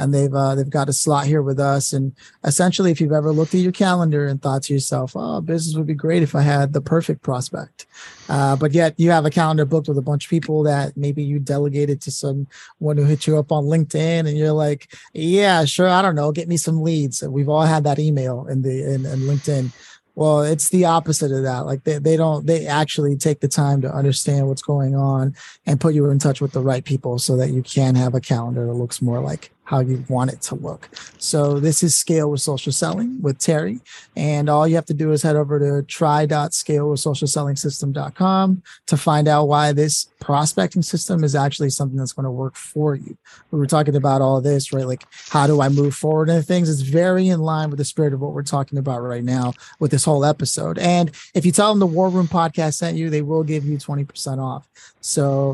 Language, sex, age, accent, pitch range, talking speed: English, male, 20-39, American, 140-160 Hz, 235 wpm